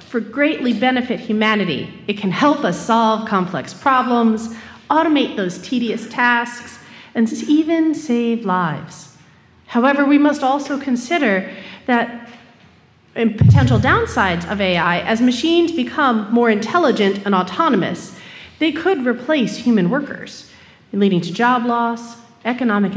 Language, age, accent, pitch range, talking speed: English, 40-59, American, 200-280 Hz, 125 wpm